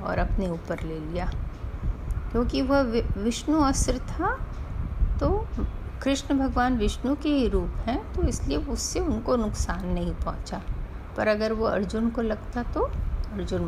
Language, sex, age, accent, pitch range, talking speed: Hindi, female, 50-69, native, 185-250 Hz, 150 wpm